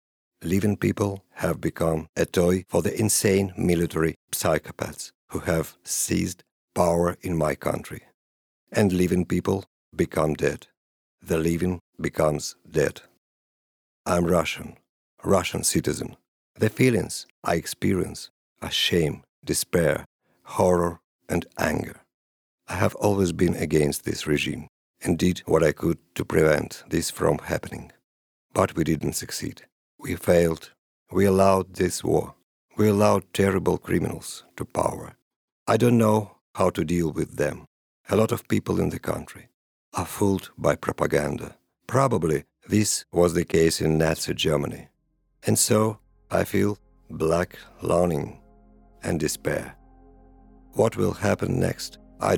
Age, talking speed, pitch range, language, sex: 50-69, 130 wpm, 80-95 Hz, Romanian, male